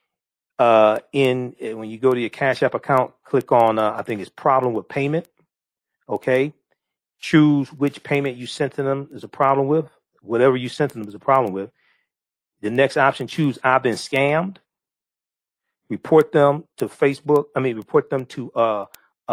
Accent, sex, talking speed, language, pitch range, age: American, male, 175 wpm, English, 110-140 Hz, 40-59